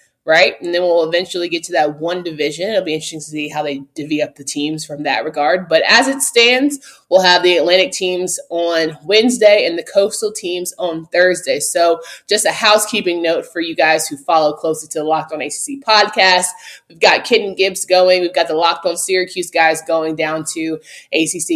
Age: 20-39